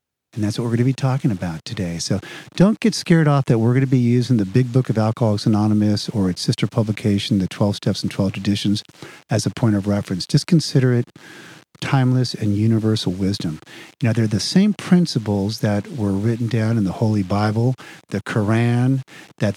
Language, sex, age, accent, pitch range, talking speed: English, male, 50-69, American, 100-135 Hz, 200 wpm